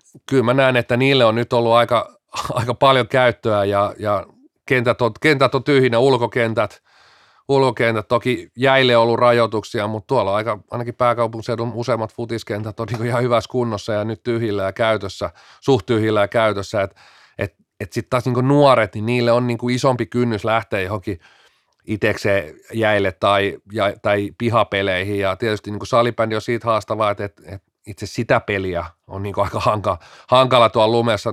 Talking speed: 165 wpm